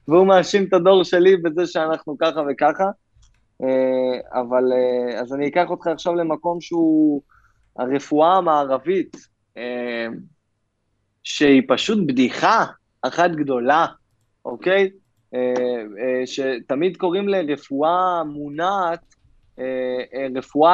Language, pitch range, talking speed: Hebrew, 145-200 Hz, 85 wpm